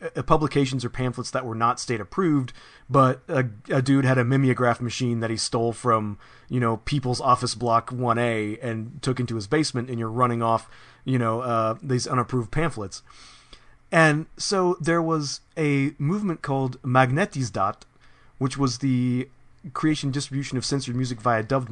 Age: 30-49